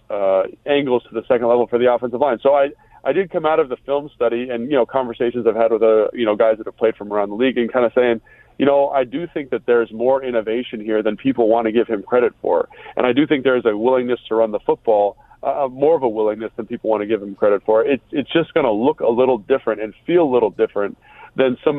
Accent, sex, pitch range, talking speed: American, male, 110-135 Hz, 275 wpm